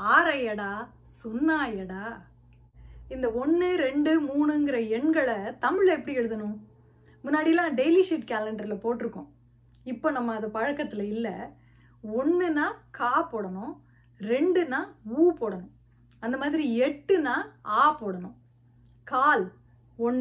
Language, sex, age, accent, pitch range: Tamil, female, 20-39, native, 215-320 Hz